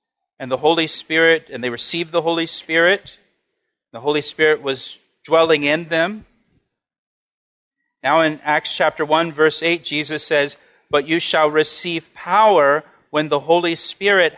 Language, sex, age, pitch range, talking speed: English, male, 40-59, 130-165 Hz, 145 wpm